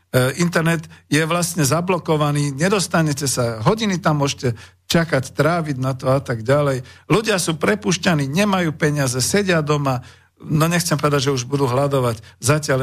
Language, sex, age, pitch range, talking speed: Slovak, male, 50-69, 120-165 Hz, 145 wpm